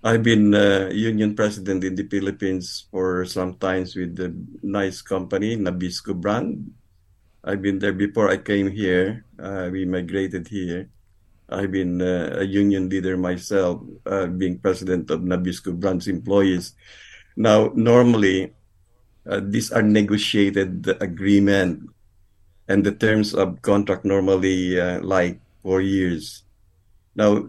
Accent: native